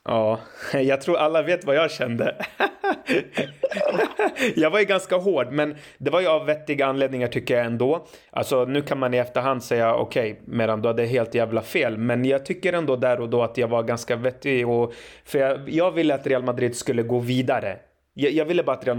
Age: 30-49